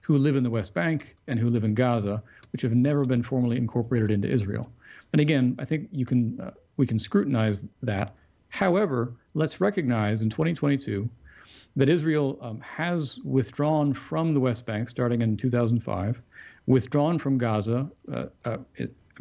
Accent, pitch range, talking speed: American, 115-145 Hz, 155 wpm